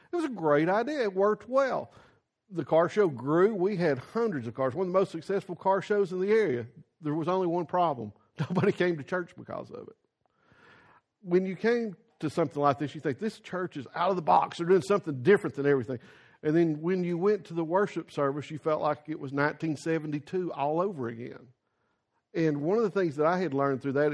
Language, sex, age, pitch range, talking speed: English, male, 50-69, 145-190 Hz, 220 wpm